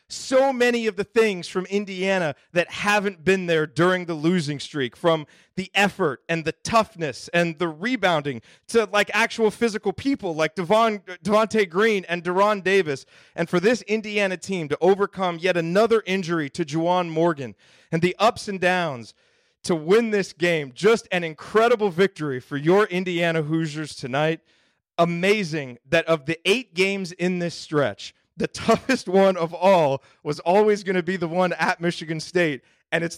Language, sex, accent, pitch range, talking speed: English, male, American, 150-190 Hz, 165 wpm